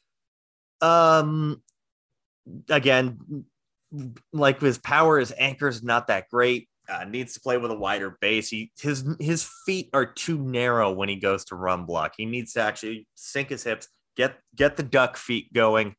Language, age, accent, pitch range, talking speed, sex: English, 30-49, American, 105-135 Hz, 165 wpm, male